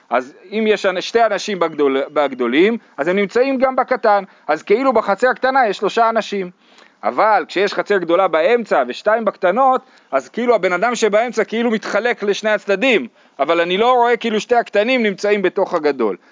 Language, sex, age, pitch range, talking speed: Hebrew, male, 40-59, 155-230 Hz, 165 wpm